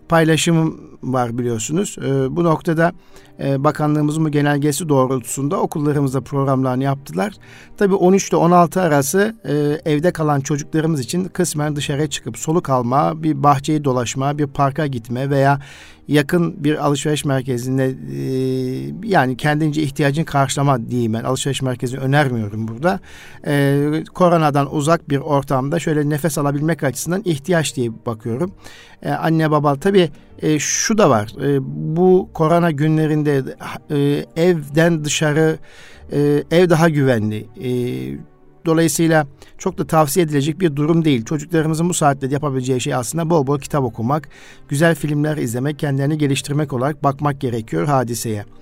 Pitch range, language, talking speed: 135-160 Hz, Turkish, 125 wpm